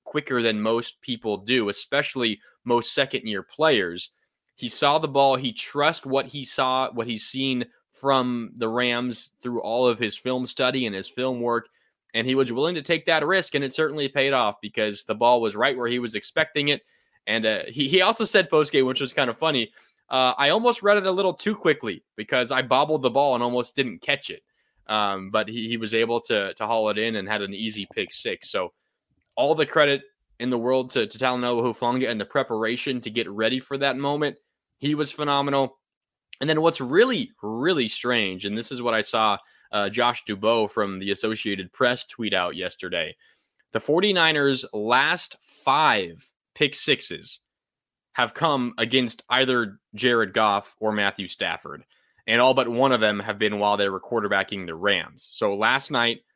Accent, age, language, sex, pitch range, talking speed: American, 20-39, English, male, 110-140 Hz, 195 wpm